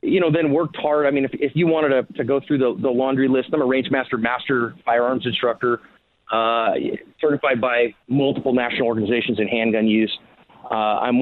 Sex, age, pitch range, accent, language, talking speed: male, 40-59, 115-135 Hz, American, English, 200 wpm